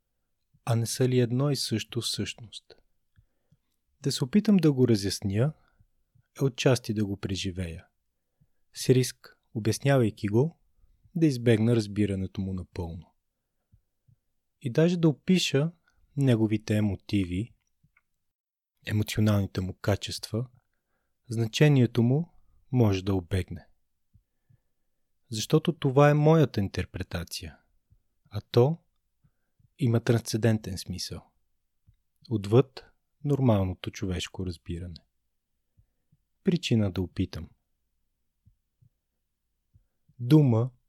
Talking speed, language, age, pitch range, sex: 90 wpm, Bulgarian, 20-39, 95-130 Hz, male